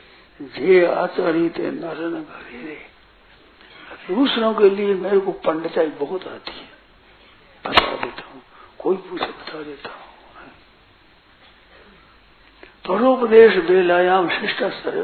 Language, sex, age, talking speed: Hindi, male, 60-79, 90 wpm